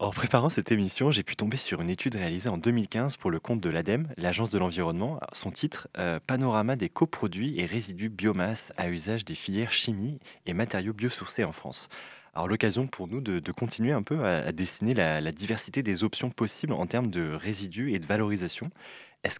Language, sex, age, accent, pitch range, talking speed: French, male, 20-39, French, 95-120 Hz, 205 wpm